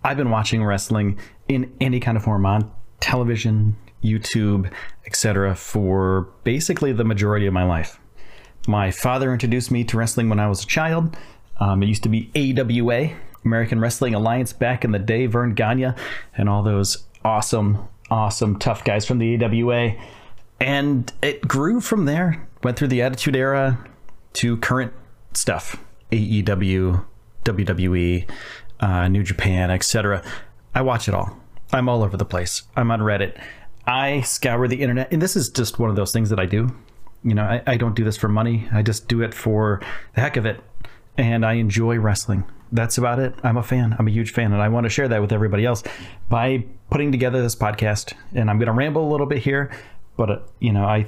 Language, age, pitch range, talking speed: English, 30-49, 105-125 Hz, 190 wpm